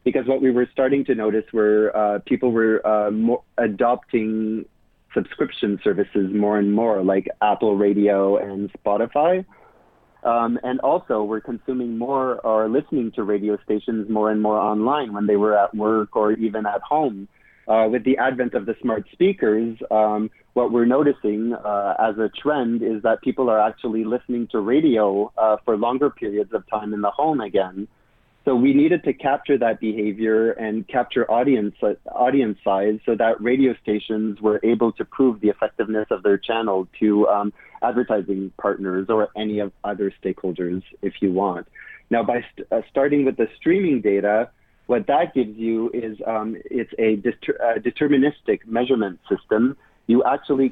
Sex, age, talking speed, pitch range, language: male, 30-49, 170 wpm, 105-125 Hz, English